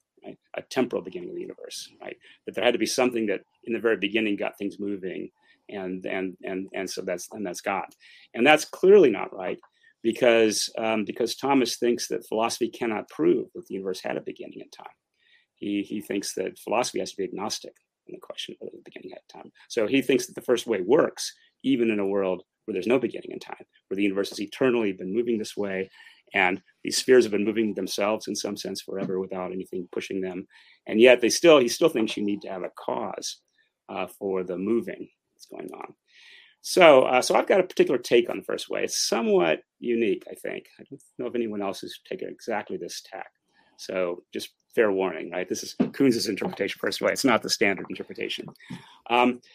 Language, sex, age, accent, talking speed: English, male, 30-49, American, 215 wpm